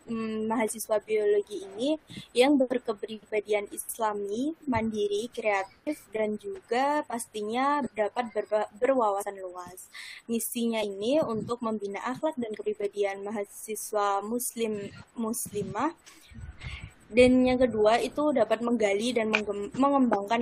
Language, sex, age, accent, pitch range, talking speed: Indonesian, female, 20-39, native, 205-250 Hz, 90 wpm